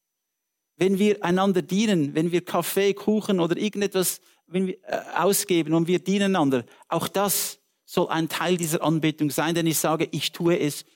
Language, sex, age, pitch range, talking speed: English, male, 50-69, 160-210 Hz, 160 wpm